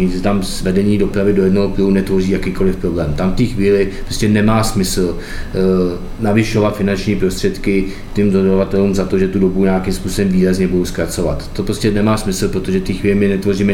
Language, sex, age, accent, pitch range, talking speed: Czech, male, 20-39, native, 95-105 Hz, 185 wpm